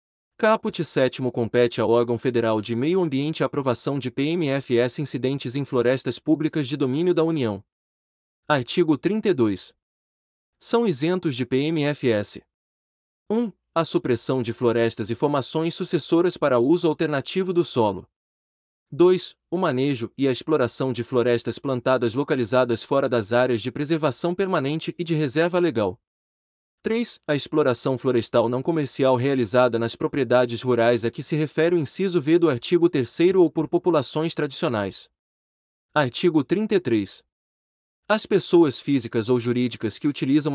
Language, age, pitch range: Portuguese, 30-49, 120-165 Hz